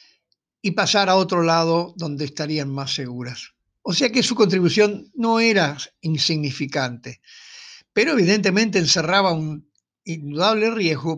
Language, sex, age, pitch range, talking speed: Spanish, male, 60-79, 145-195 Hz, 125 wpm